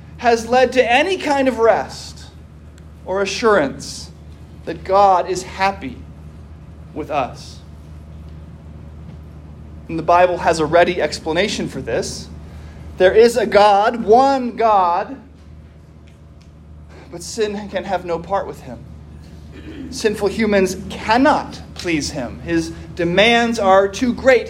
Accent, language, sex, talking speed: American, English, male, 120 wpm